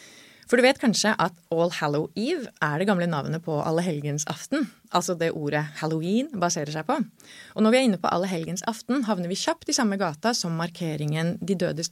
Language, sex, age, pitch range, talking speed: English, female, 30-49, 160-220 Hz, 210 wpm